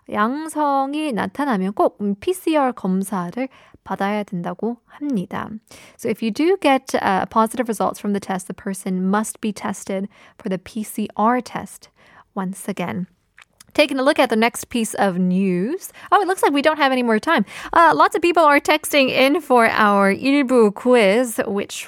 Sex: female